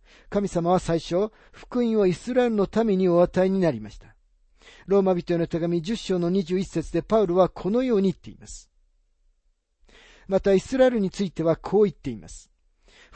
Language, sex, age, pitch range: Japanese, male, 50-69, 125-205 Hz